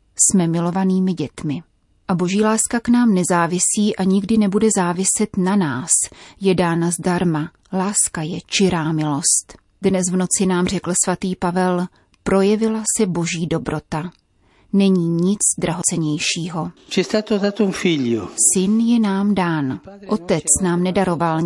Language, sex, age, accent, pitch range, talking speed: Czech, female, 30-49, native, 165-195 Hz, 120 wpm